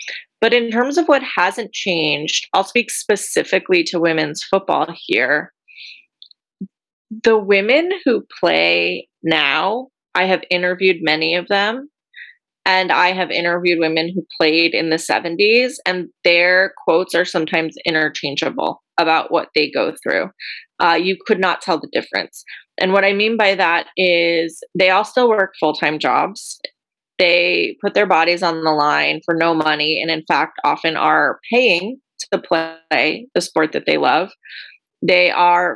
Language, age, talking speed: English, 20-39, 155 wpm